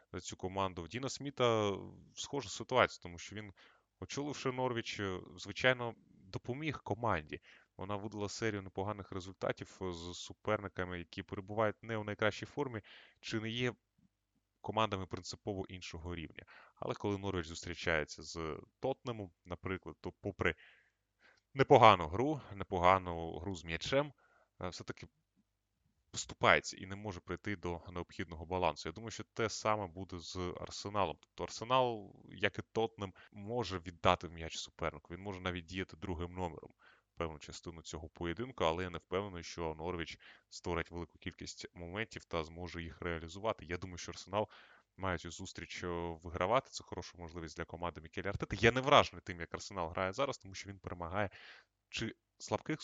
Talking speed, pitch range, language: 150 wpm, 85-110 Hz, Ukrainian